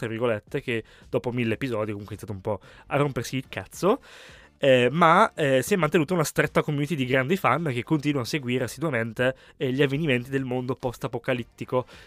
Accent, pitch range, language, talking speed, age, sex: native, 115-155 Hz, Italian, 180 wpm, 20-39, male